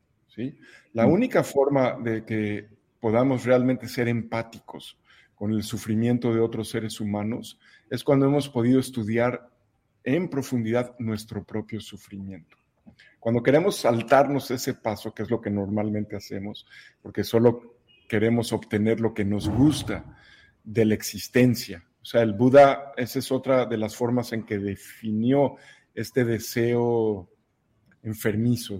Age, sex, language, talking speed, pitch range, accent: 50-69, male, Spanish, 135 wpm, 105-125 Hz, Mexican